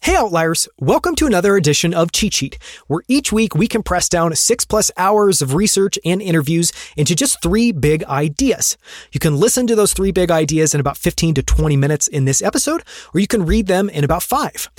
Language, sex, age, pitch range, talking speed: English, male, 30-49, 145-200 Hz, 215 wpm